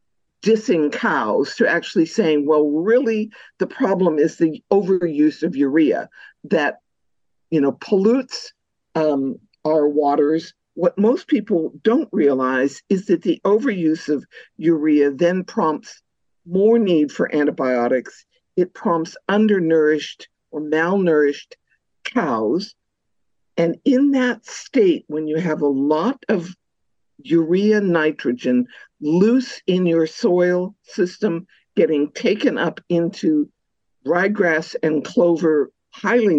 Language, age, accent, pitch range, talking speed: English, 50-69, American, 155-215 Hz, 115 wpm